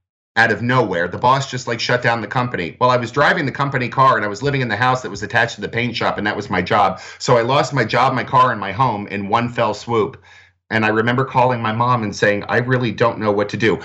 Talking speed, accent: 290 wpm, American